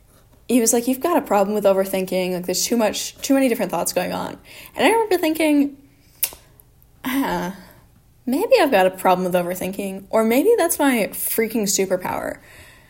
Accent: American